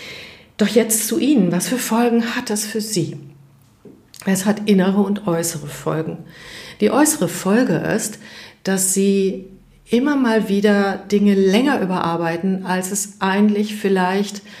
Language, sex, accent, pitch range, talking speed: German, female, German, 175-210 Hz, 135 wpm